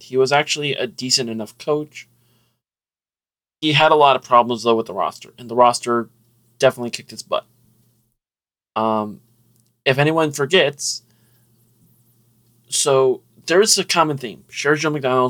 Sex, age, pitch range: male, 20-39, 115-135 Hz